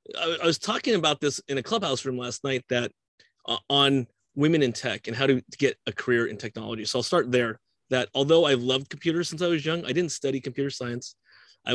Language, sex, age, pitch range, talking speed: English, male, 30-49, 120-140 Hz, 225 wpm